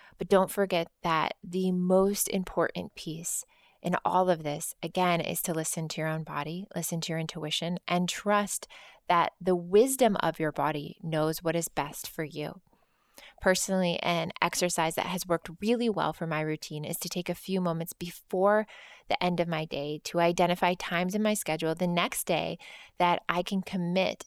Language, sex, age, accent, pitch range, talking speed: English, female, 20-39, American, 160-185 Hz, 185 wpm